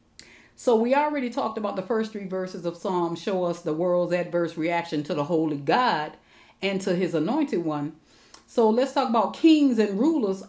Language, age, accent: English, 40-59, American